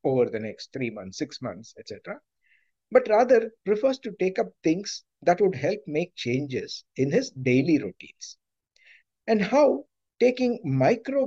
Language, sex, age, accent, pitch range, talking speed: English, male, 50-69, Indian, 135-215 Hz, 150 wpm